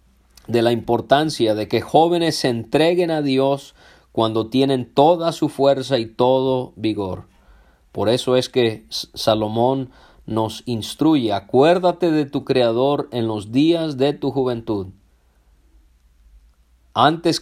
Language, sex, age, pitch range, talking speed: Spanish, male, 40-59, 100-135 Hz, 125 wpm